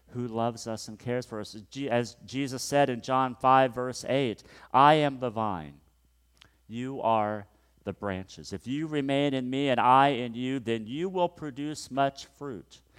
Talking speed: 175 wpm